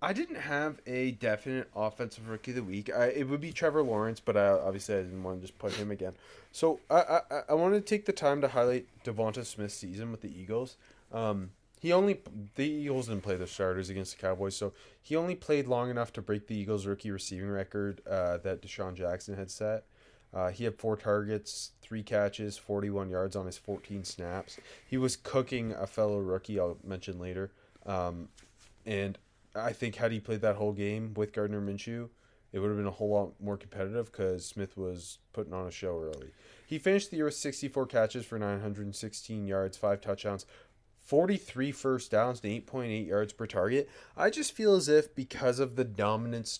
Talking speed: 200 wpm